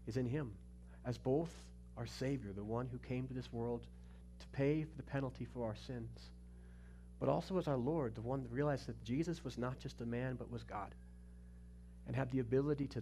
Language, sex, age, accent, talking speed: English, male, 40-59, American, 210 wpm